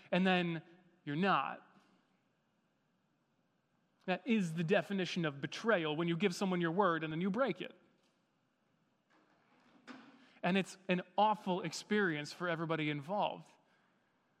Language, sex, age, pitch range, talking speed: English, male, 30-49, 170-220 Hz, 120 wpm